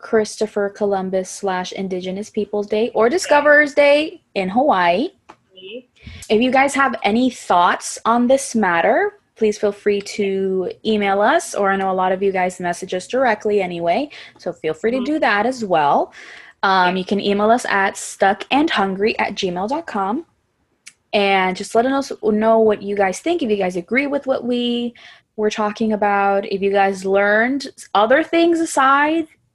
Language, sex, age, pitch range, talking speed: English, female, 20-39, 190-245 Hz, 165 wpm